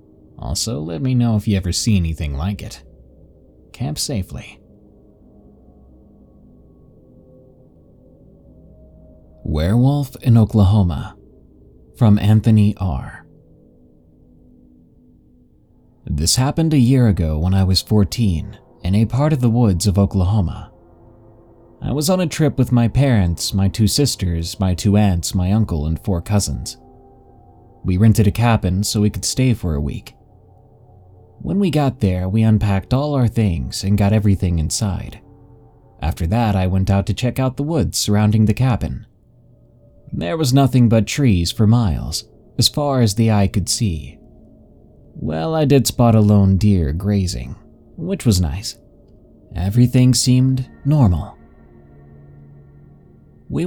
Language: English